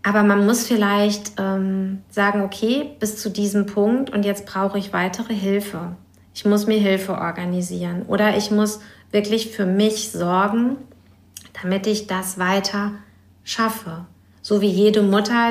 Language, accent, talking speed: German, German, 145 wpm